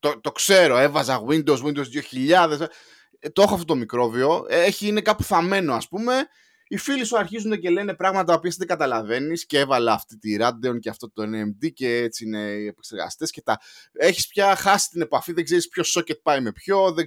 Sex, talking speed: male, 205 wpm